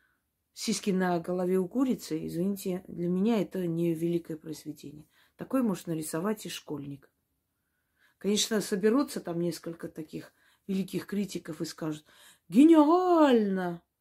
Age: 30-49